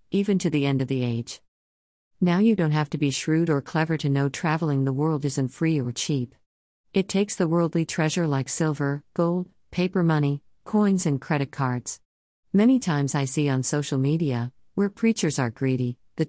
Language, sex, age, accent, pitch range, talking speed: English, female, 50-69, American, 130-165 Hz, 190 wpm